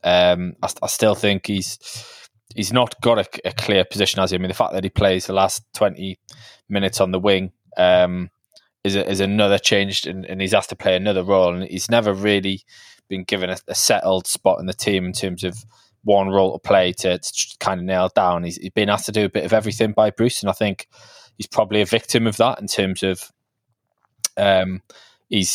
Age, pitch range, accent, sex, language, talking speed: 20-39, 95-110 Hz, British, male, English, 220 wpm